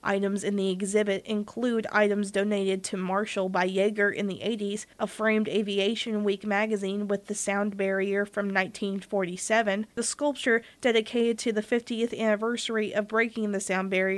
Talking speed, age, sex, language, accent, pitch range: 155 wpm, 20-39, female, English, American, 200-225 Hz